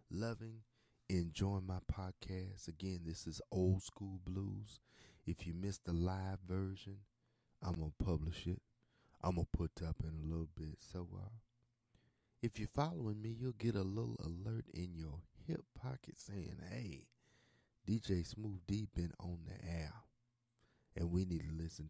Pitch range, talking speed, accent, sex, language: 85-115 Hz, 155 wpm, American, male, English